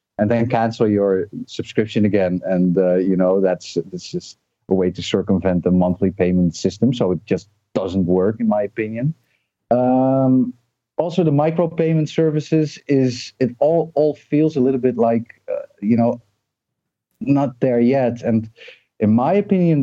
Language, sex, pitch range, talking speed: English, male, 95-125 Hz, 160 wpm